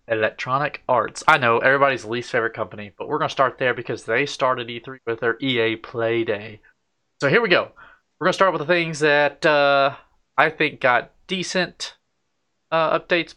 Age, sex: 20-39, male